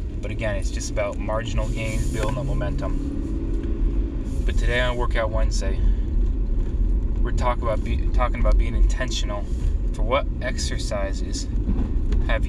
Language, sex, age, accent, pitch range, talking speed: English, male, 20-39, American, 70-115 Hz, 125 wpm